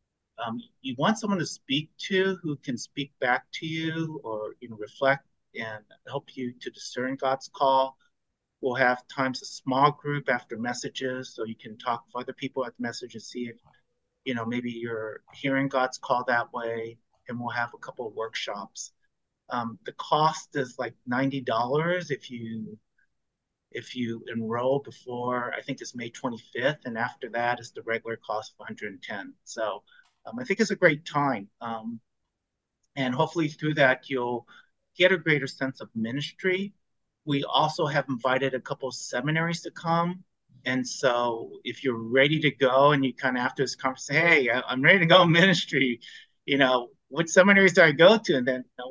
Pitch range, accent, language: 120-155 Hz, American, English